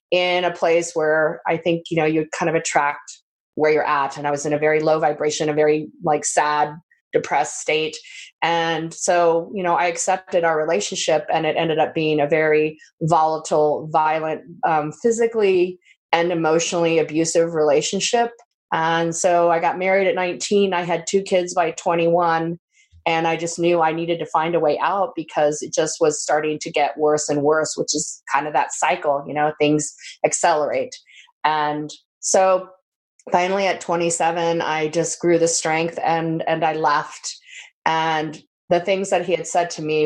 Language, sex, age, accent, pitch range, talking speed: English, female, 30-49, American, 155-180 Hz, 180 wpm